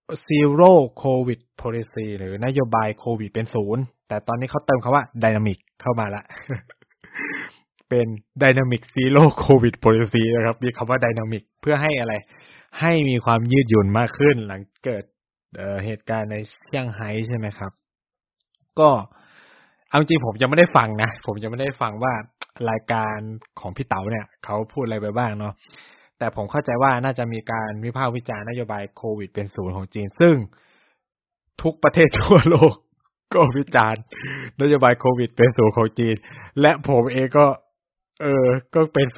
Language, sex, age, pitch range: Thai, male, 20-39, 110-135 Hz